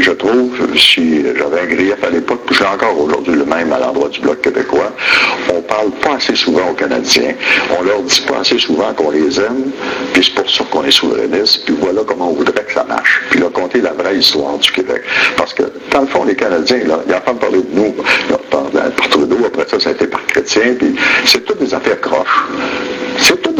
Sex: male